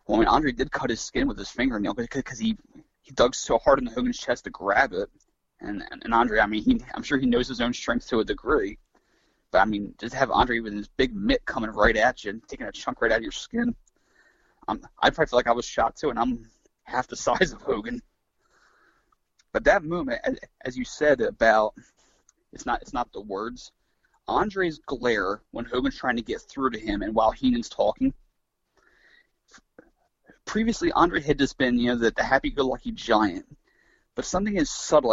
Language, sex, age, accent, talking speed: English, male, 20-39, American, 210 wpm